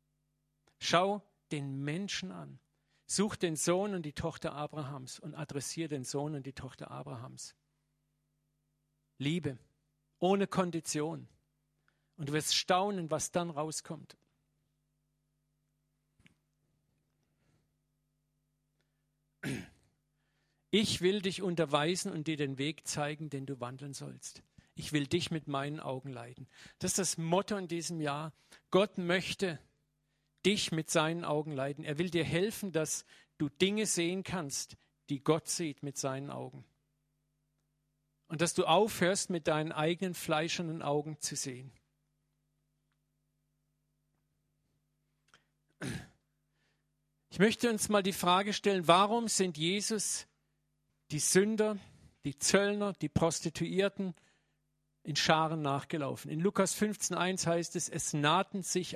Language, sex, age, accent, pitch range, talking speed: German, male, 50-69, German, 145-175 Hz, 120 wpm